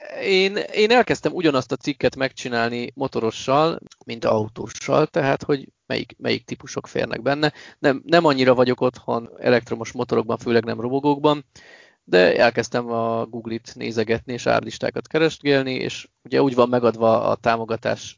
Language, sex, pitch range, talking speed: Hungarian, male, 115-135 Hz, 140 wpm